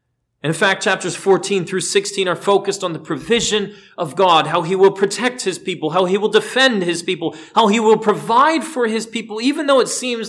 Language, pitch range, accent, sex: English, 115-185 Hz, American, male